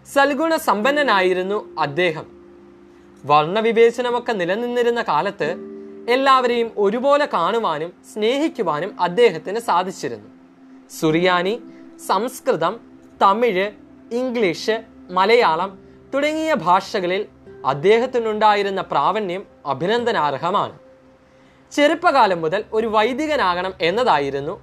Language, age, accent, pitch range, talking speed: Malayalam, 20-39, native, 150-240 Hz, 65 wpm